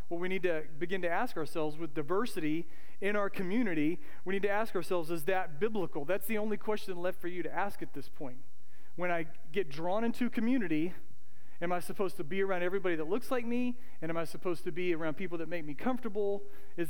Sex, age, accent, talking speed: male, 40-59, American, 225 wpm